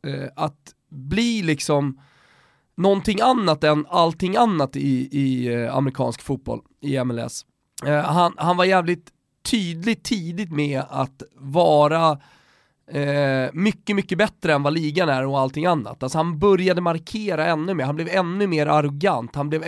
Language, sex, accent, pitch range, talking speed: Swedish, male, native, 135-170 Hz, 145 wpm